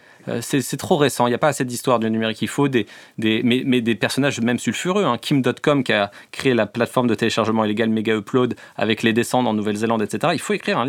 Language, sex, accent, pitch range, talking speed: French, male, French, 115-145 Hz, 245 wpm